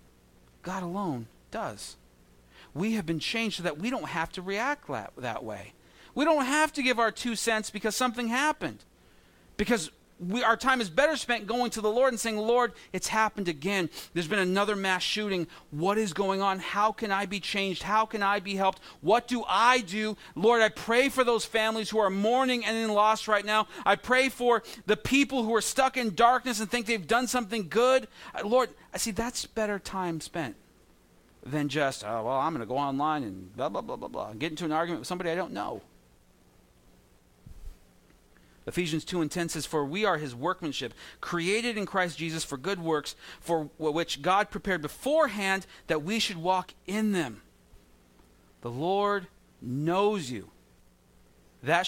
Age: 40-59